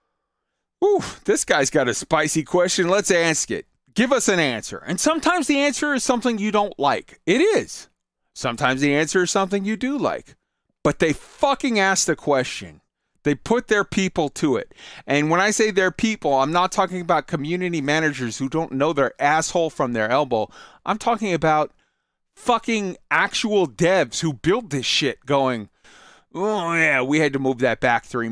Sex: male